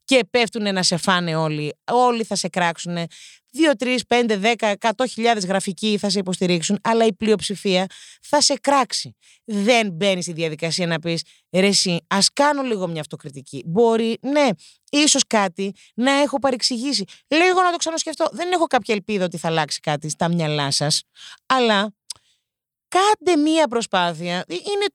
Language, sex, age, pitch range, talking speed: Greek, female, 30-49, 175-260 Hz, 160 wpm